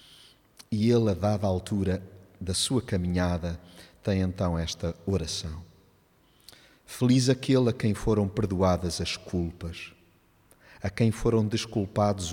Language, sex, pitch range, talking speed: Portuguese, male, 85-115 Hz, 115 wpm